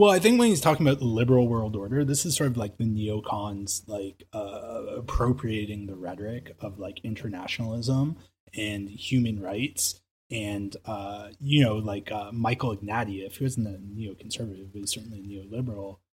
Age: 20-39